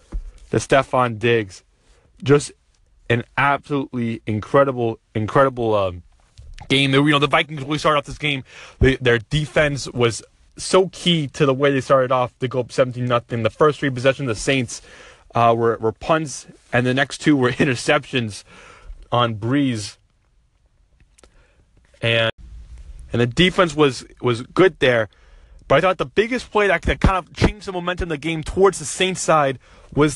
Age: 20-39